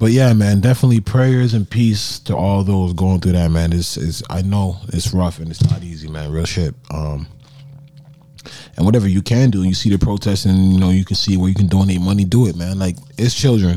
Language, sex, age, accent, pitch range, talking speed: English, male, 20-39, American, 90-125 Hz, 230 wpm